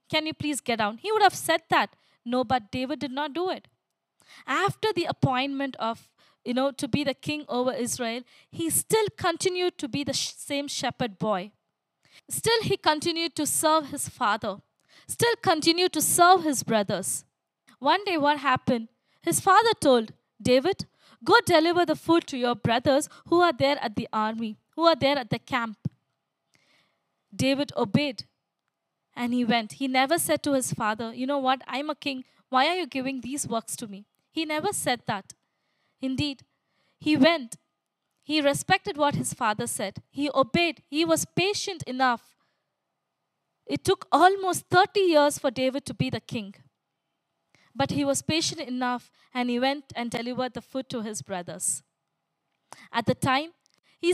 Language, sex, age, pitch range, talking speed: Tamil, female, 20-39, 240-325 Hz, 170 wpm